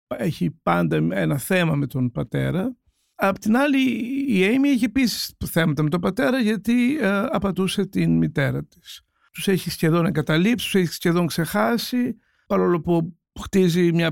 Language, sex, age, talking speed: Greek, male, 60-79, 155 wpm